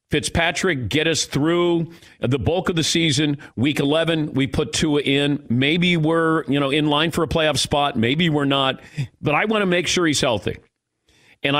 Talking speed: 190 wpm